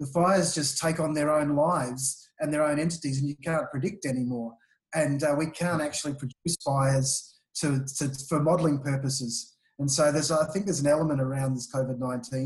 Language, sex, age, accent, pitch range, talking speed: English, male, 30-49, Australian, 130-150 Hz, 195 wpm